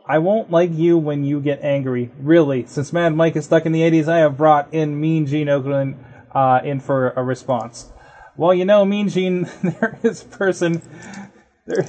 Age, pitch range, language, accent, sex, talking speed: 20-39, 155-195 Hz, English, American, male, 190 wpm